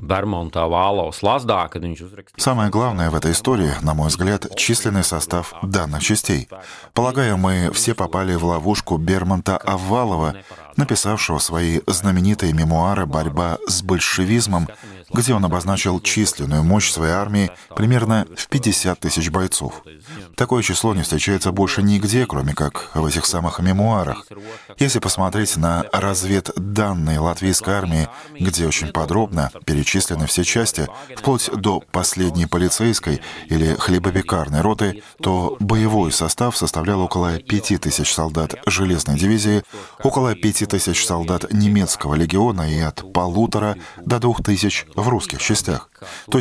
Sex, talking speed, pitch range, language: male, 125 wpm, 85-105 Hz, Russian